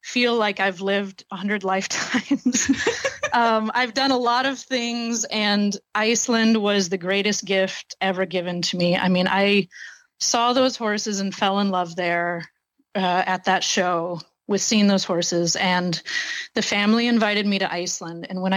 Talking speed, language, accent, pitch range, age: 165 wpm, English, American, 180-220 Hz, 30-49